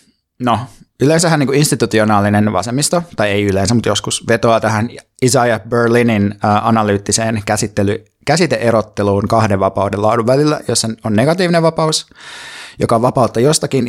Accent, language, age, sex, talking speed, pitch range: native, Finnish, 20-39, male, 125 wpm, 100-120 Hz